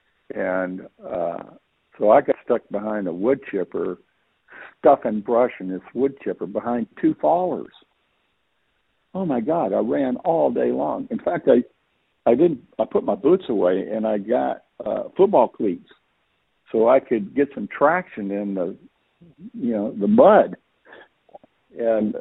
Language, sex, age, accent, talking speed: English, male, 60-79, American, 150 wpm